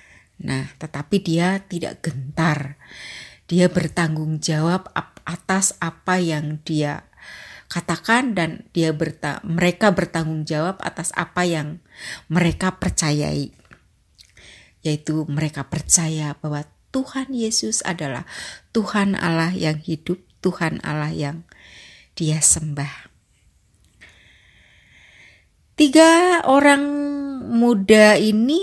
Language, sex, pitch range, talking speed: Indonesian, female, 155-215 Hz, 90 wpm